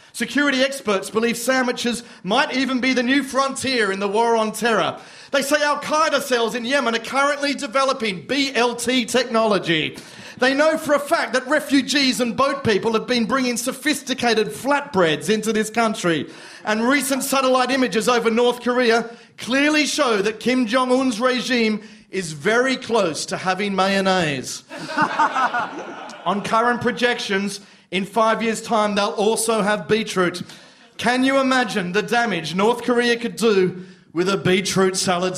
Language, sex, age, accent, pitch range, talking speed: English, male, 40-59, Australian, 190-250 Hz, 150 wpm